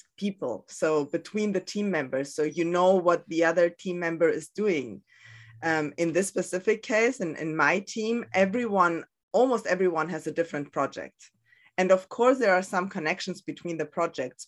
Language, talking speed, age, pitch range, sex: English, 175 wpm, 20-39, 145-190 Hz, female